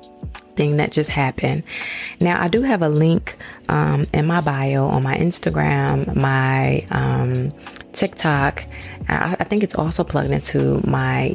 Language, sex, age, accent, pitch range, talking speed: English, female, 20-39, American, 90-155 Hz, 145 wpm